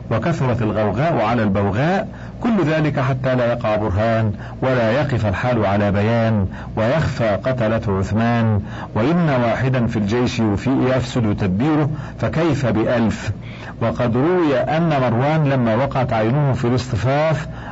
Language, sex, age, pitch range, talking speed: Arabic, male, 50-69, 115-150 Hz, 120 wpm